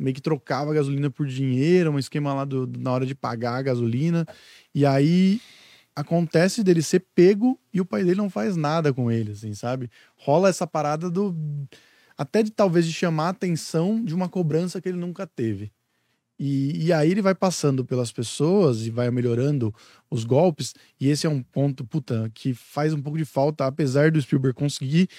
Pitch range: 130-165 Hz